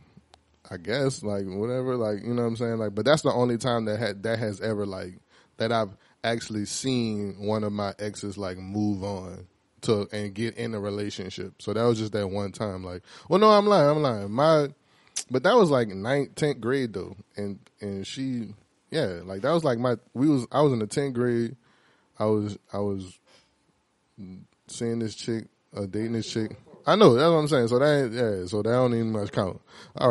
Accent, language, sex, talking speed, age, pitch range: American, English, male, 210 wpm, 20-39, 100-130 Hz